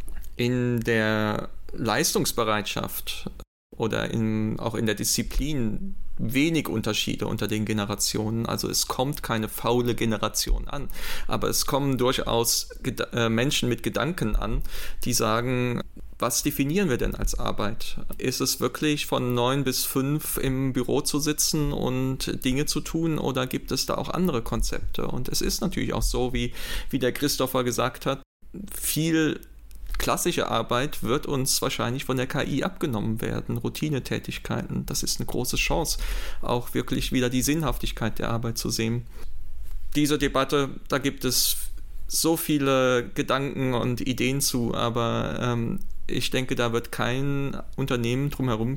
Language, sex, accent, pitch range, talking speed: German, male, German, 115-140 Hz, 145 wpm